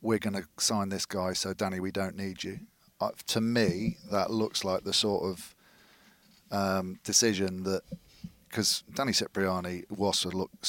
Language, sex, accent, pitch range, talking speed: English, male, British, 90-100 Hz, 165 wpm